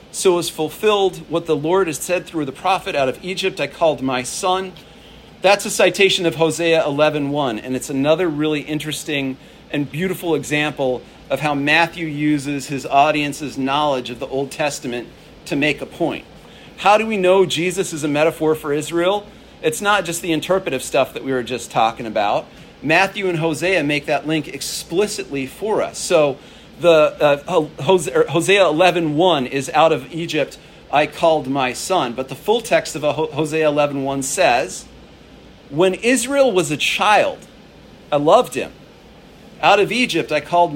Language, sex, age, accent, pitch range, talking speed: English, male, 40-59, American, 150-190 Hz, 170 wpm